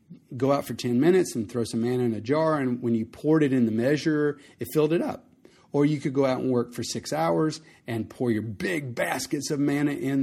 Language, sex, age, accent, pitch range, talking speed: English, male, 40-59, American, 115-145 Hz, 245 wpm